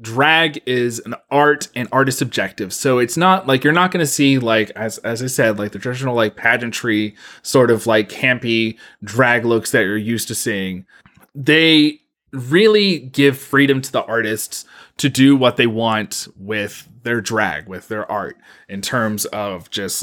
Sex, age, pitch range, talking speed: male, 20-39, 115-160 Hz, 175 wpm